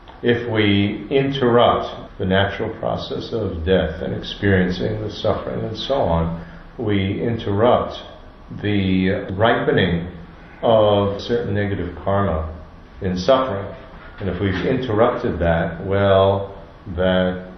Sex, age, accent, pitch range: male, 50-69, American, 85-110 Hz